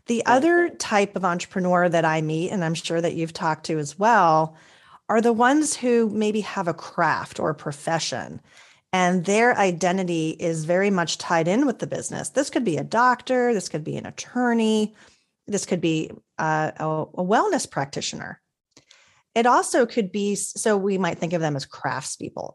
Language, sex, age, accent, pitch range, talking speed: English, female, 30-49, American, 160-225 Hz, 180 wpm